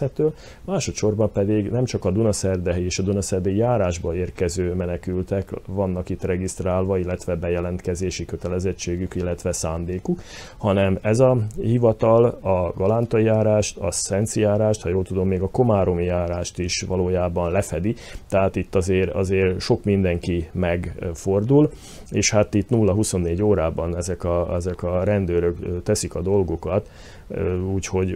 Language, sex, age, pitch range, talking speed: Hungarian, male, 30-49, 85-100 Hz, 130 wpm